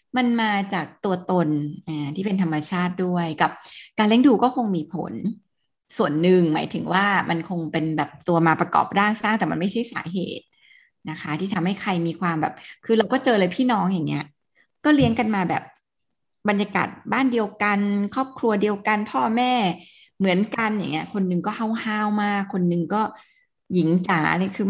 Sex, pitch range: female, 180-230 Hz